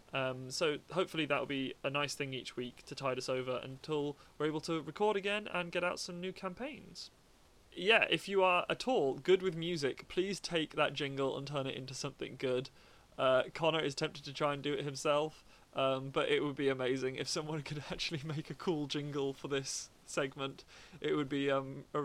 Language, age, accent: English, 20-39, British